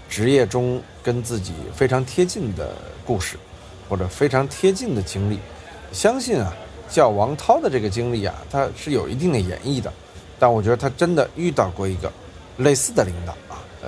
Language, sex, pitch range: Chinese, male, 95-130 Hz